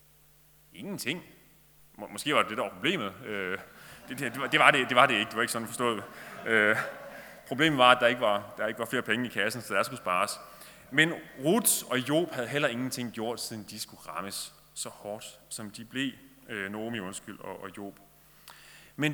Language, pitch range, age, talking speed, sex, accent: Danish, 105-150 Hz, 30-49, 205 wpm, male, native